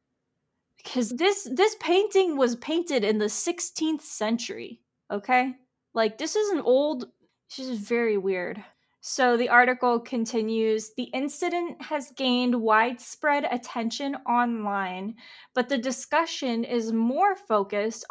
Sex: female